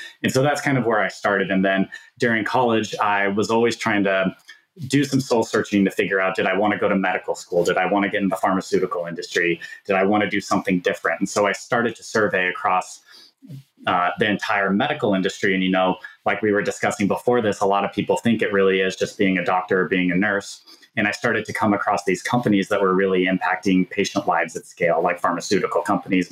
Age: 30-49